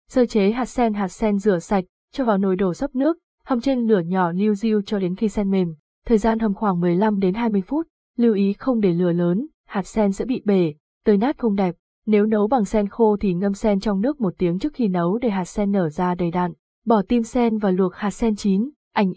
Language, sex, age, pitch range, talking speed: Vietnamese, female, 20-39, 190-235 Hz, 245 wpm